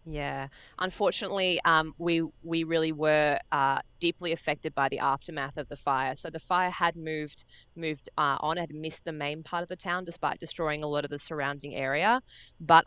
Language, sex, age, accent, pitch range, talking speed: English, female, 20-39, Australian, 145-175 Hz, 190 wpm